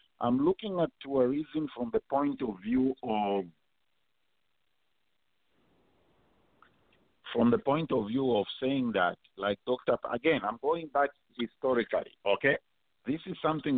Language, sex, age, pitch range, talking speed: English, male, 50-69, 115-165 Hz, 125 wpm